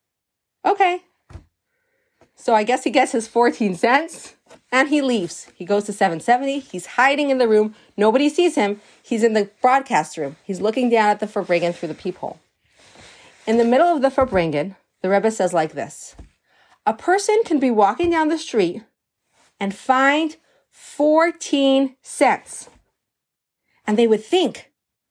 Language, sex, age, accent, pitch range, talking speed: English, female, 40-59, American, 215-325 Hz, 155 wpm